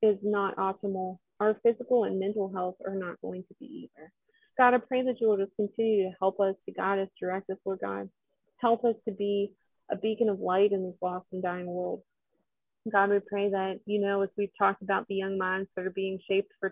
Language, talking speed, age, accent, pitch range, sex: English, 230 wpm, 30-49, American, 195-220 Hz, female